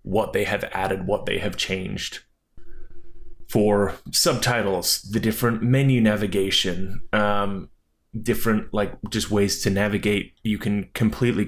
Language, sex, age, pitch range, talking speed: English, male, 20-39, 95-115 Hz, 125 wpm